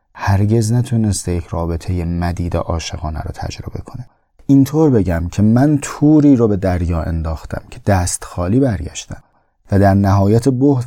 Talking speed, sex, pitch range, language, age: 145 wpm, male, 90-120 Hz, Persian, 30-49